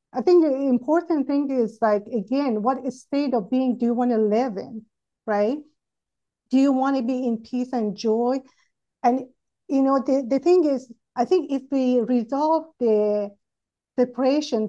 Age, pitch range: 50-69, 220-270 Hz